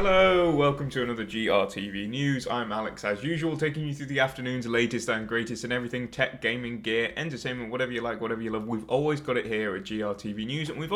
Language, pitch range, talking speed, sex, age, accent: Italian, 115-155 Hz, 220 wpm, male, 20-39, British